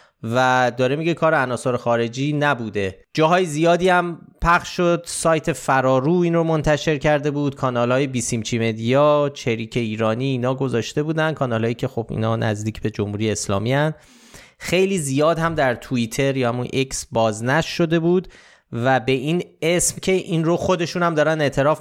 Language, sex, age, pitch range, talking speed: Persian, male, 30-49, 115-150 Hz, 160 wpm